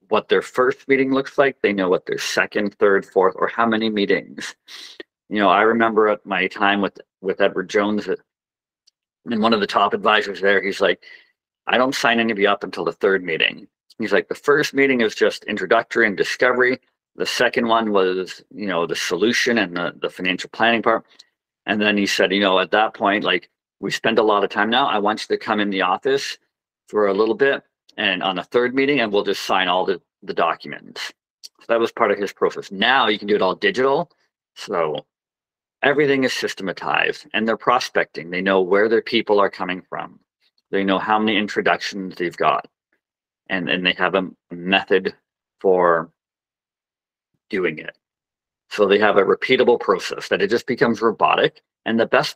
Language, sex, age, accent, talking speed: English, male, 50-69, American, 200 wpm